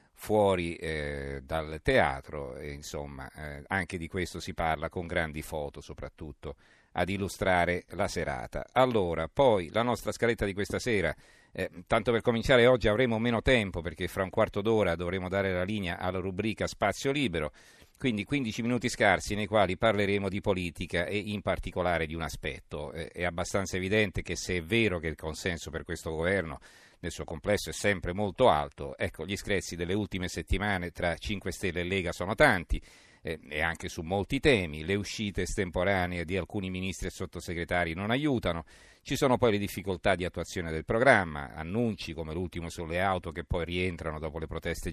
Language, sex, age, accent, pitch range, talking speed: Italian, male, 50-69, native, 85-105 Hz, 180 wpm